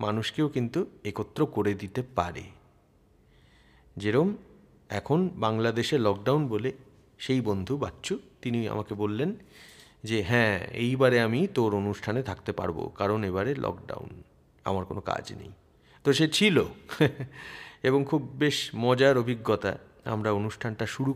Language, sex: Bengali, male